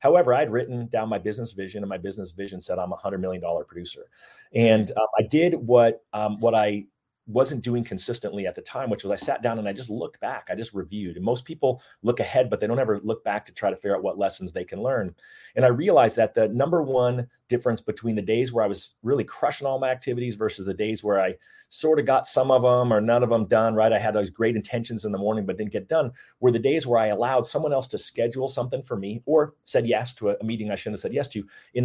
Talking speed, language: 265 wpm, English